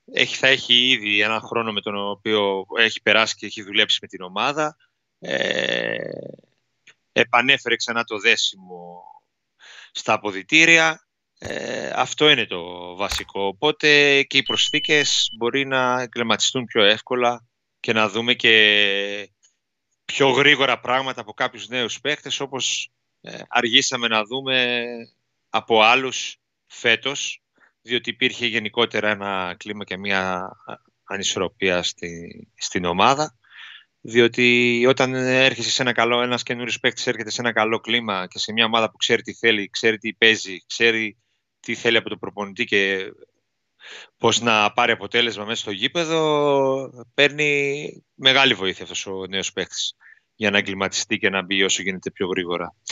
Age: 30-49